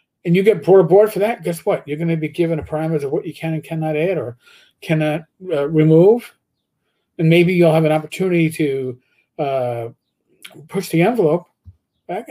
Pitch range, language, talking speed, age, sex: 135-180 Hz, English, 190 wpm, 50-69, male